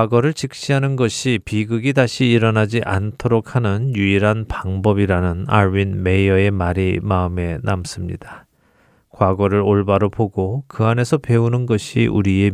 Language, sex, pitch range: Korean, male, 95-125 Hz